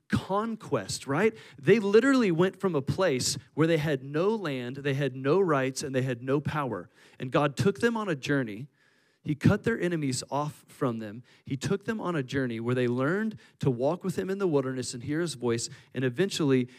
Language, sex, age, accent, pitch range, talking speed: English, male, 40-59, American, 125-165 Hz, 205 wpm